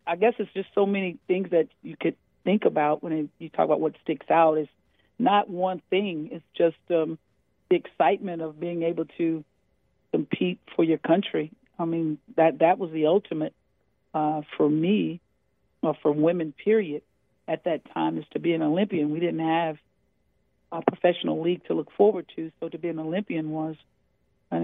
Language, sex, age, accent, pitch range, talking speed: English, female, 50-69, American, 155-175 Hz, 190 wpm